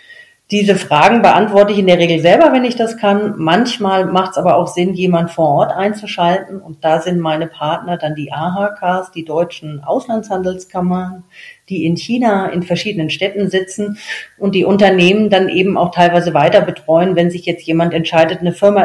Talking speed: 180 wpm